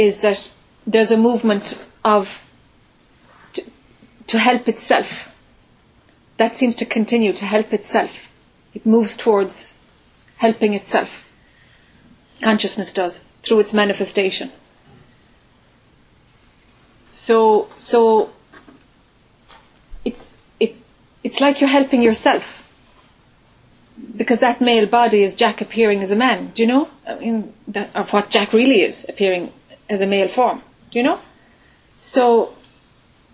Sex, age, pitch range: female, 30-49, 205-240 Hz